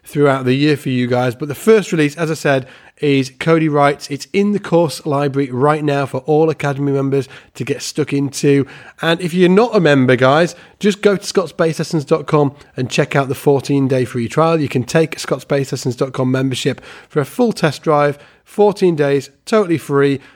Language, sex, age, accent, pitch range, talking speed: English, male, 30-49, British, 130-165 Hz, 190 wpm